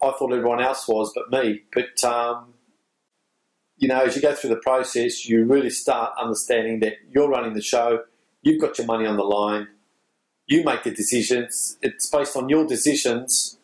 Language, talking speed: English, 185 wpm